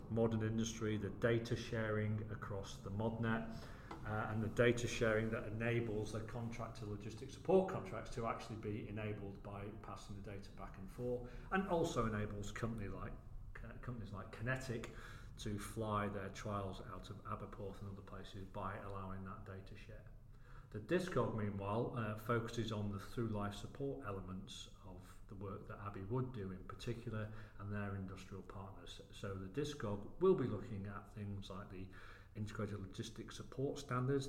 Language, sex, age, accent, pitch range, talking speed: English, male, 40-59, British, 100-120 Hz, 160 wpm